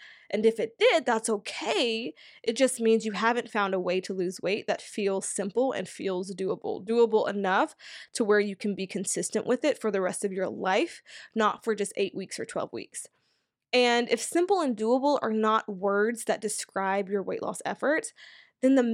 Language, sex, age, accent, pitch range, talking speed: English, female, 20-39, American, 210-270 Hz, 200 wpm